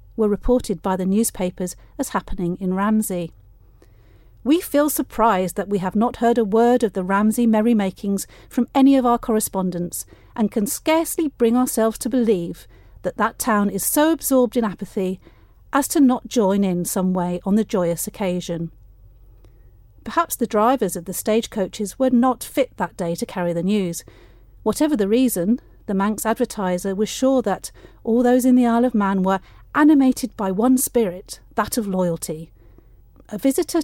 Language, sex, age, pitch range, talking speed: English, female, 40-59, 180-245 Hz, 170 wpm